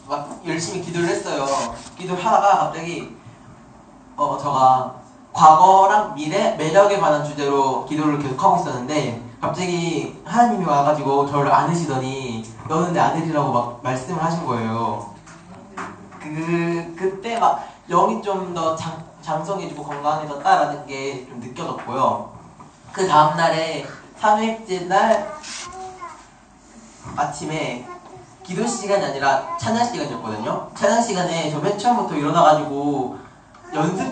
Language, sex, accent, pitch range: Korean, male, native, 145-195 Hz